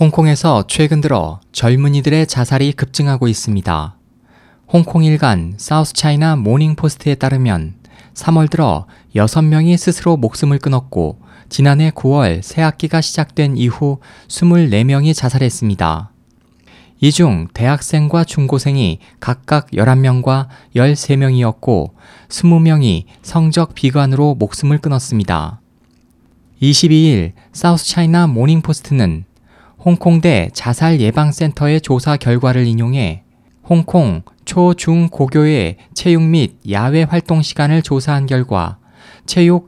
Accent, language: native, Korean